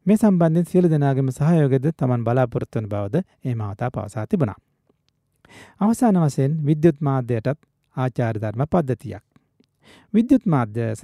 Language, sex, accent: Japanese, male, Indian